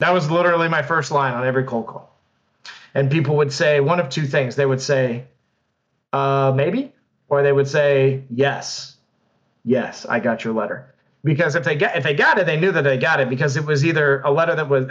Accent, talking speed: American, 220 wpm